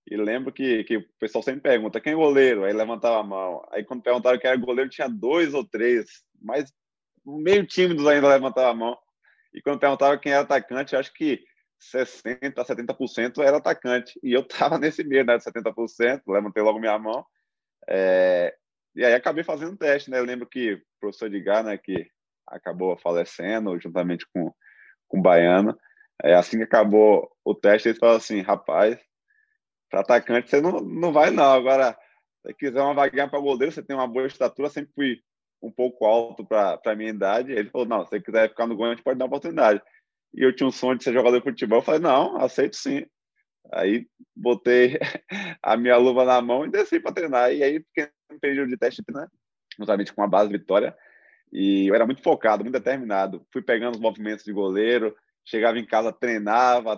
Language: Portuguese